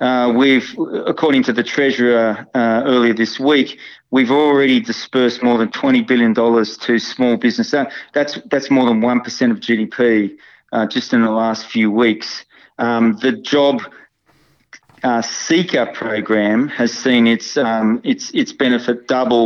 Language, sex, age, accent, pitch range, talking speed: English, male, 40-59, Australian, 115-135 Hz, 150 wpm